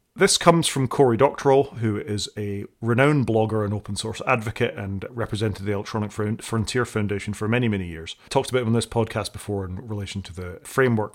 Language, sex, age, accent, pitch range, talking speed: English, male, 30-49, British, 100-125 Hz, 195 wpm